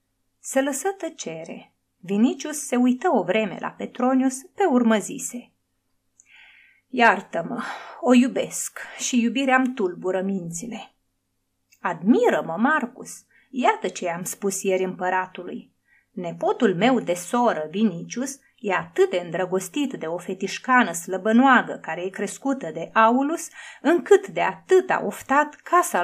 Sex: female